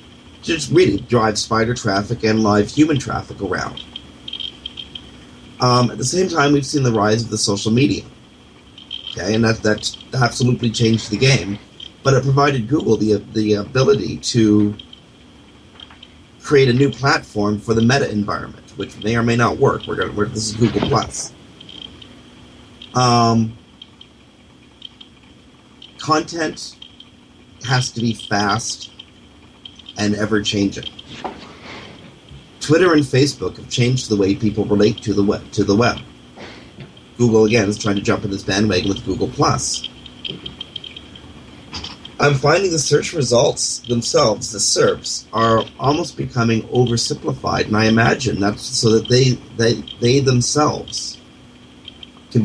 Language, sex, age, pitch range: English, male, 40-59, 105-125 Hz